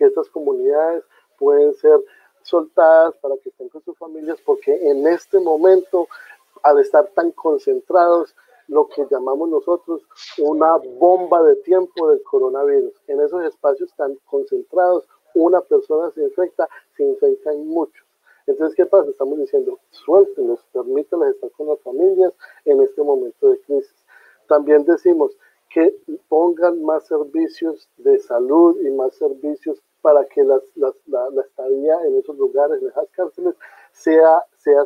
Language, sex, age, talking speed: Spanish, male, 50-69, 145 wpm